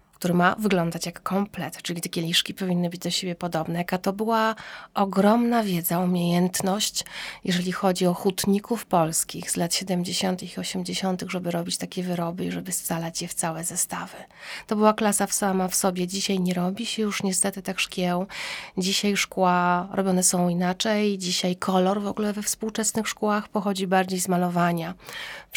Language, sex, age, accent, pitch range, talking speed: Polish, female, 30-49, native, 180-195 Hz, 170 wpm